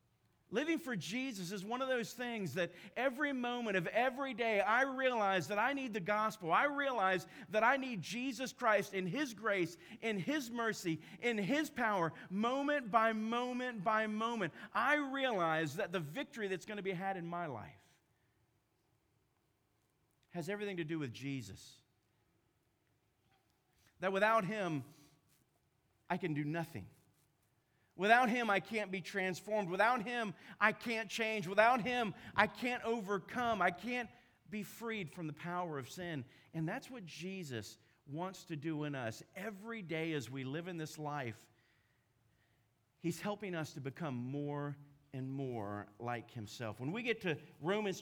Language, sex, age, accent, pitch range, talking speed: English, male, 40-59, American, 135-220 Hz, 155 wpm